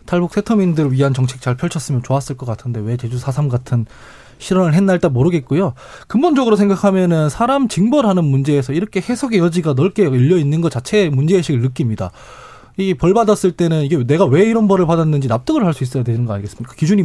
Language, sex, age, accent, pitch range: Korean, male, 20-39, native, 135-205 Hz